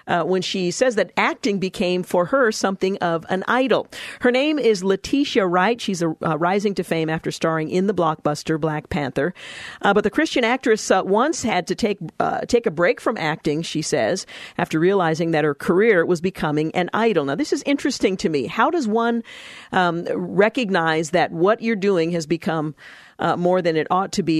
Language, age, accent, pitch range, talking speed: English, 50-69, American, 160-210 Hz, 200 wpm